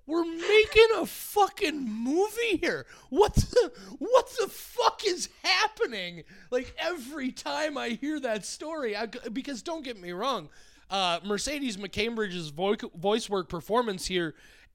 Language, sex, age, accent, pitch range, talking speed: English, male, 30-49, American, 180-295 Hz, 135 wpm